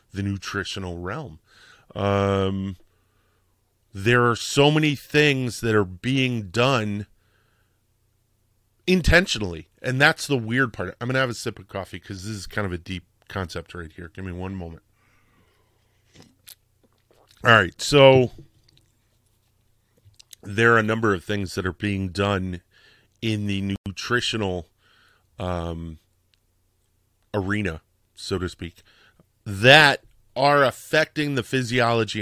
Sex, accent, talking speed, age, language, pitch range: male, American, 125 wpm, 30-49, English, 95-115 Hz